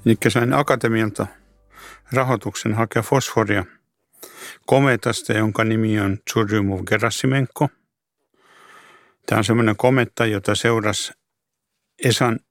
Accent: native